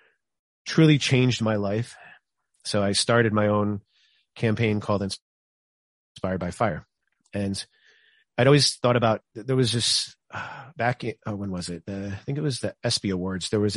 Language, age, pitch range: English, 30-49, 100-115 Hz